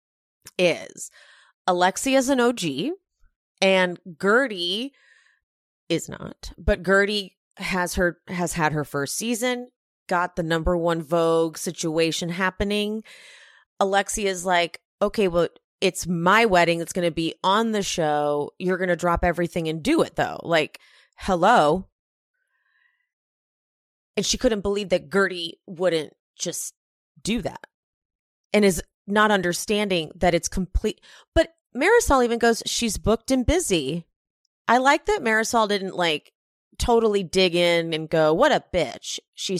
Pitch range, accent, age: 175-245 Hz, American, 30-49